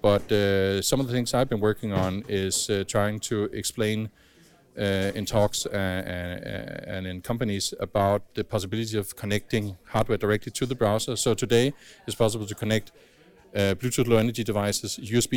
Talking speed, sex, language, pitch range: 175 wpm, male, Polish, 100-120 Hz